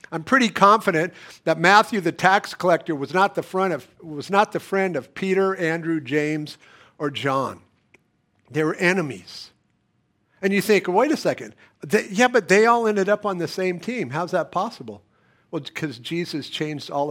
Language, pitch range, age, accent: English, 160-210 Hz, 50-69, American